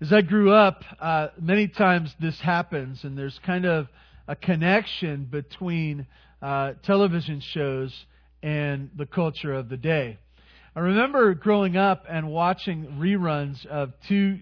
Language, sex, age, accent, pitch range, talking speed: English, male, 40-59, American, 140-185 Hz, 140 wpm